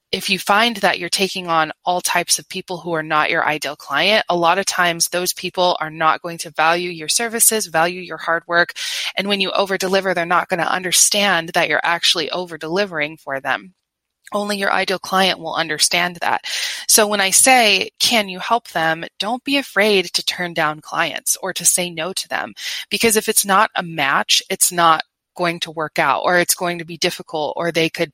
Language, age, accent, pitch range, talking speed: English, 20-39, American, 165-195 Hz, 210 wpm